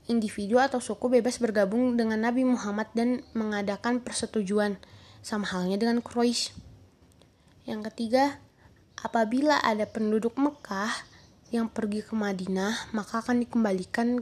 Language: Malay